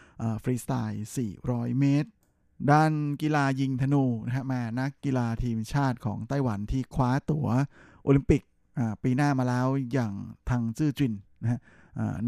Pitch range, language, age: 115-135 Hz, Thai, 20-39